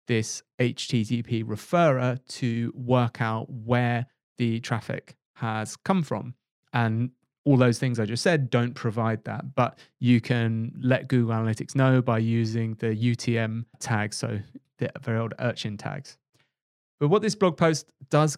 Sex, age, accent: male, 30-49, British